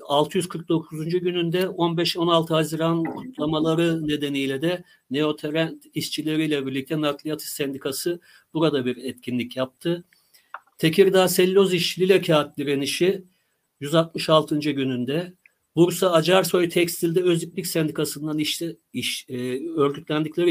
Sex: male